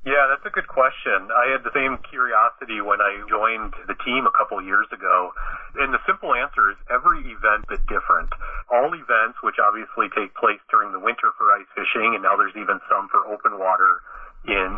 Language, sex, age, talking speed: English, male, 30-49, 205 wpm